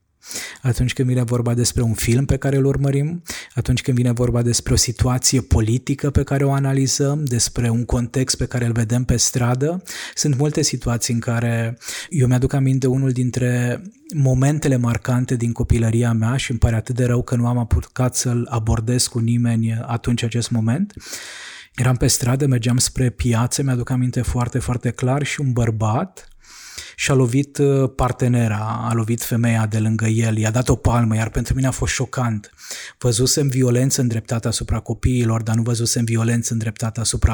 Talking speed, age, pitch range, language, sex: 175 wpm, 20-39, 115-135 Hz, Romanian, male